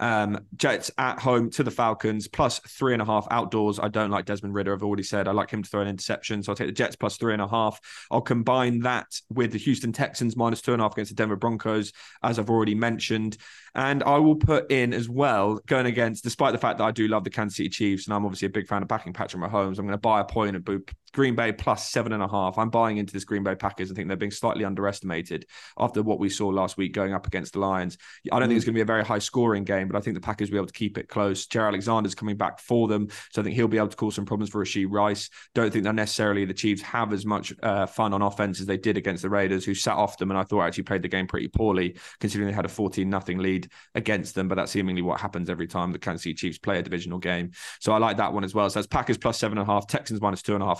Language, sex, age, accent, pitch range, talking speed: English, male, 20-39, British, 100-115 Hz, 290 wpm